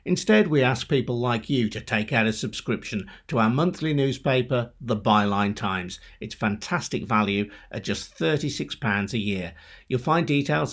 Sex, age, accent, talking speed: male, 50-69, British, 160 wpm